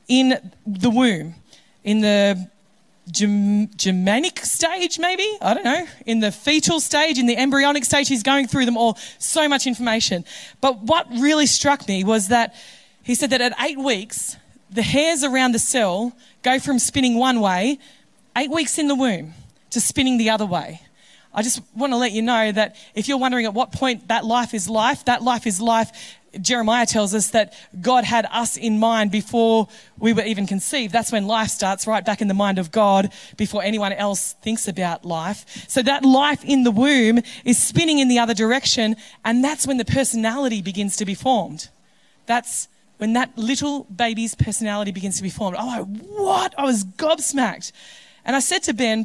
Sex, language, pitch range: female, English, 210-265 Hz